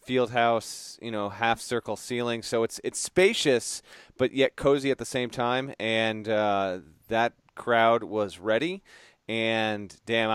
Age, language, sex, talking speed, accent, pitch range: 30-49, English, male, 140 wpm, American, 105-130 Hz